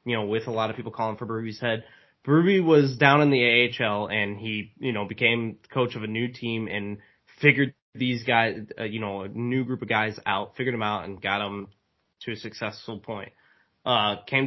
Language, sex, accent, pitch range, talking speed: English, male, American, 110-135 Hz, 210 wpm